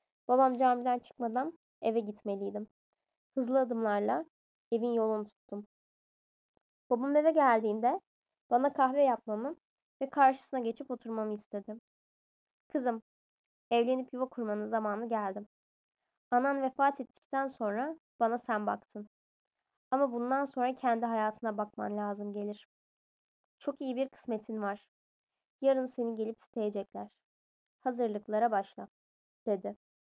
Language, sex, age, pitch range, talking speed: Turkish, female, 10-29, 210-260 Hz, 105 wpm